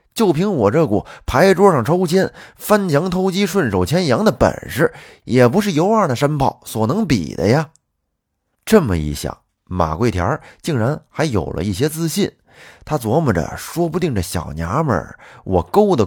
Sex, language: male, Chinese